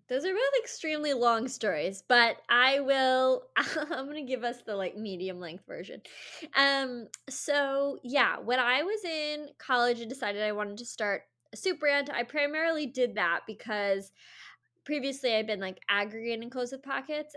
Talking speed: 175 wpm